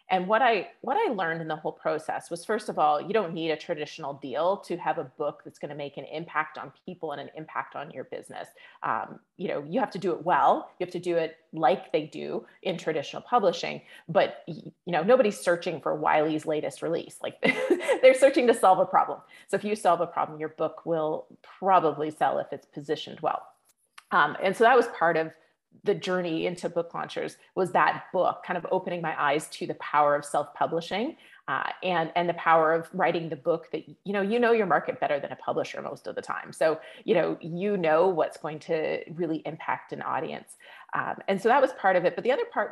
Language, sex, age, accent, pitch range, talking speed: English, female, 30-49, American, 155-190 Hz, 225 wpm